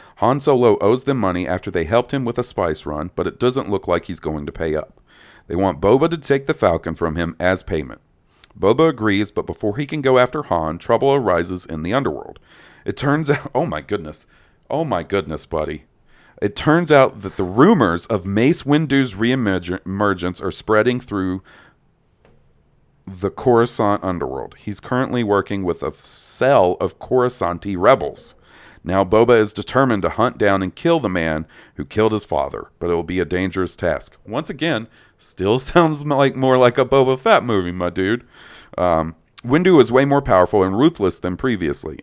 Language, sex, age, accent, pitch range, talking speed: English, male, 40-59, American, 90-130 Hz, 185 wpm